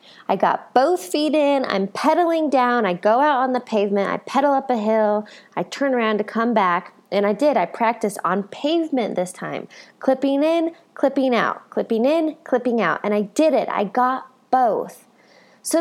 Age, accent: 20-39, American